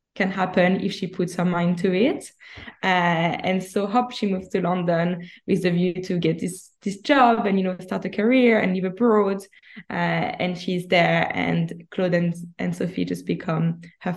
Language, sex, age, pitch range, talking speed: English, female, 20-39, 175-195 Hz, 195 wpm